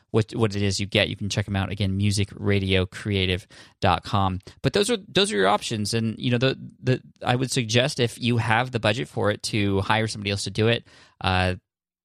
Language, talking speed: English, 215 wpm